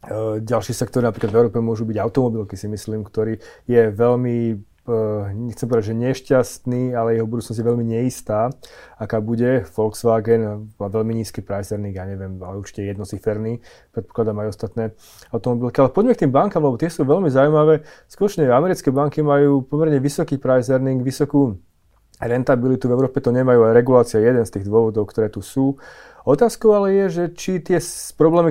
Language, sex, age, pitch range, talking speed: Slovak, male, 30-49, 115-140 Hz, 165 wpm